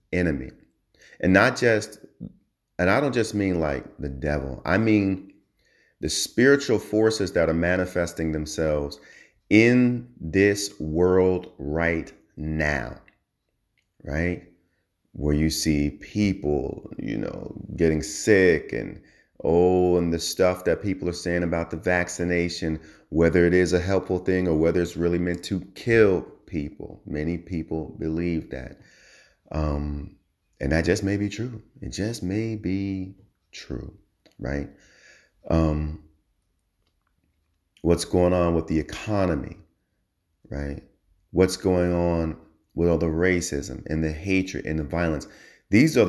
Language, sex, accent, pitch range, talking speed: English, male, American, 80-95 Hz, 130 wpm